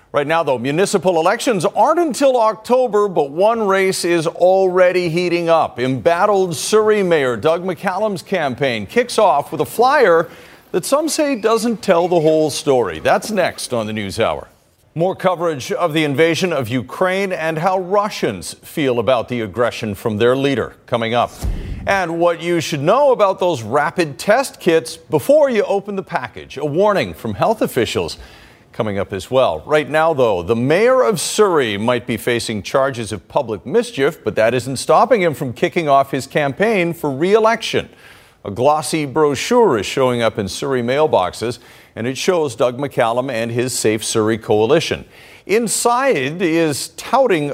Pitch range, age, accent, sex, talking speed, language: 125-200 Hz, 50-69, American, male, 165 wpm, English